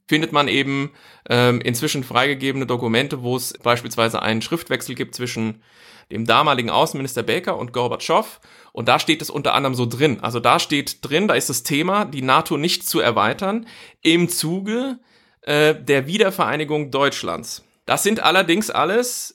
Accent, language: German, German